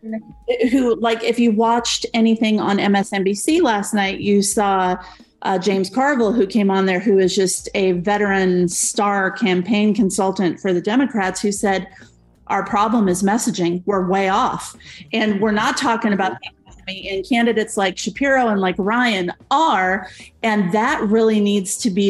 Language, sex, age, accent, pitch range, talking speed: English, female, 30-49, American, 190-225 Hz, 155 wpm